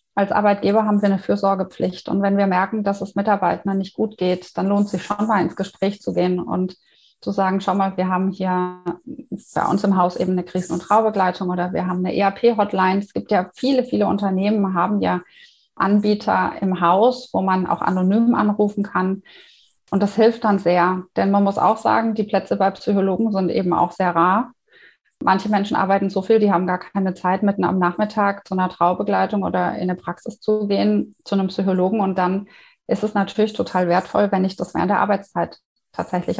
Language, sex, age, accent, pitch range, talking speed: German, female, 30-49, German, 185-210 Hz, 205 wpm